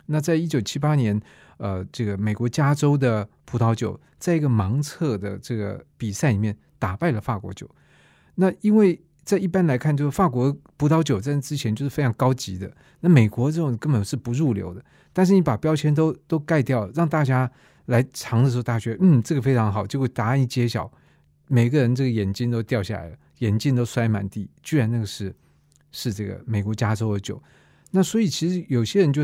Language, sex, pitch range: Chinese, male, 110-155 Hz